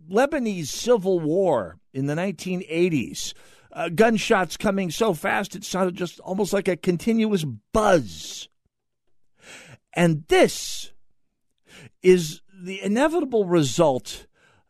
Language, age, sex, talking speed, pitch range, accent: English, 50-69, male, 100 wpm, 115-180 Hz, American